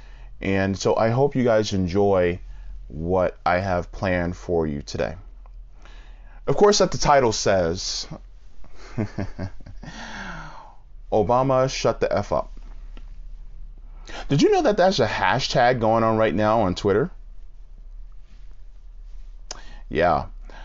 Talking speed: 115 wpm